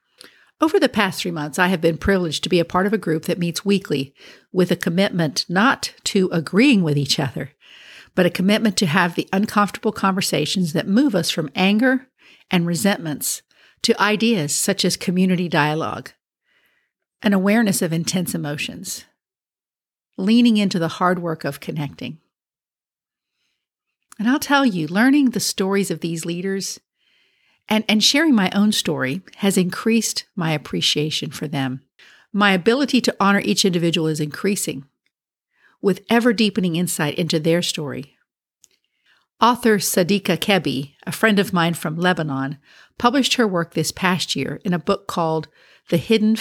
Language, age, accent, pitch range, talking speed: English, 50-69, American, 160-210 Hz, 155 wpm